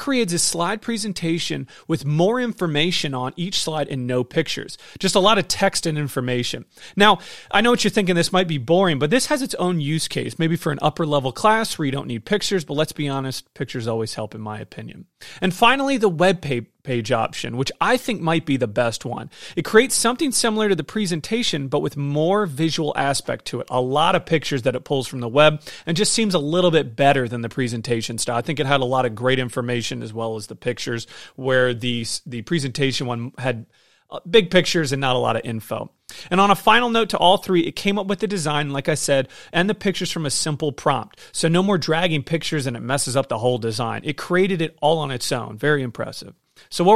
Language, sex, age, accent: English, male, 30-49, American